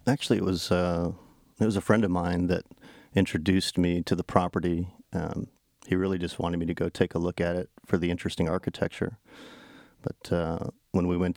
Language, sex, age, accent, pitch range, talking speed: English, male, 40-59, American, 80-95 Hz, 200 wpm